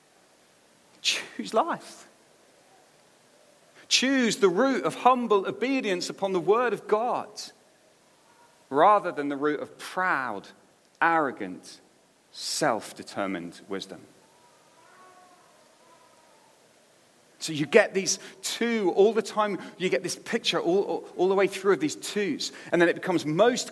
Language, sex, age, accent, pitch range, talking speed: English, male, 40-59, British, 180-295 Hz, 120 wpm